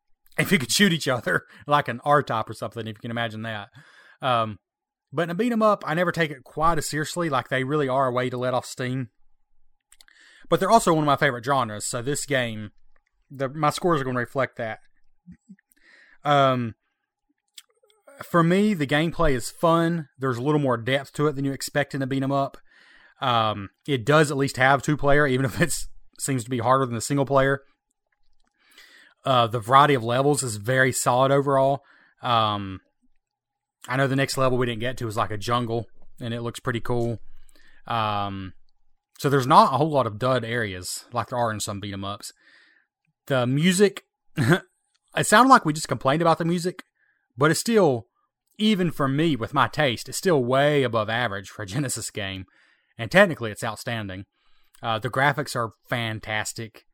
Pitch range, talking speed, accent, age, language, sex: 120-155 Hz, 185 wpm, American, 30-49, English, male